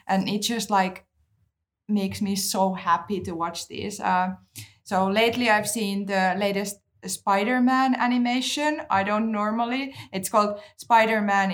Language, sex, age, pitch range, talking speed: English, female, 20-39, 170-210 Hz, 135 wpm